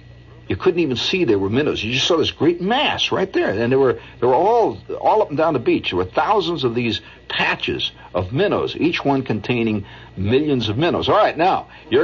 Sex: male